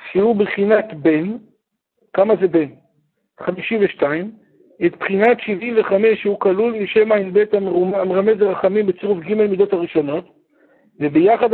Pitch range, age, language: 180-240 Hz, 60-79, Hebrew